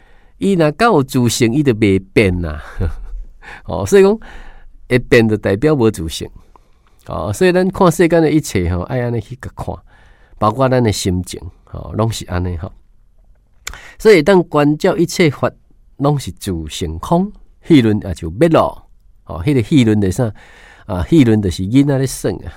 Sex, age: male, 50-69